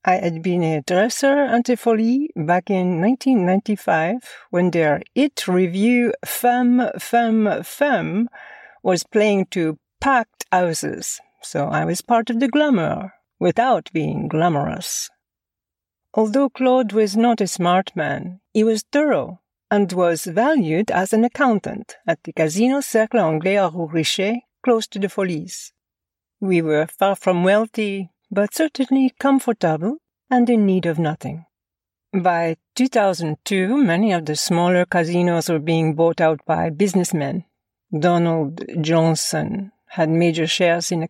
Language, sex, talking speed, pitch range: English, female, 135 wpm, 170-230 Hz